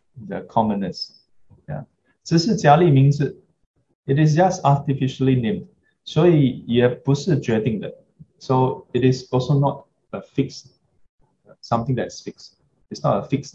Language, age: English, 20-39